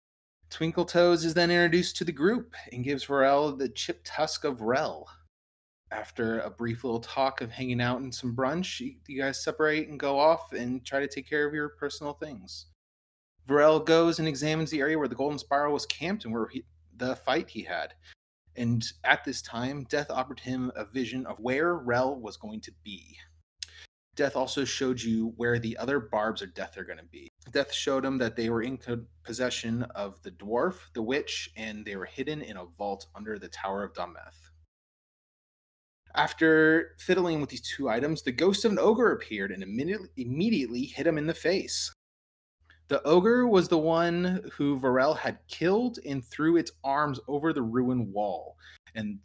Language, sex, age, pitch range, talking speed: English, male, 30-49, 110-150 Hz, 190 wpm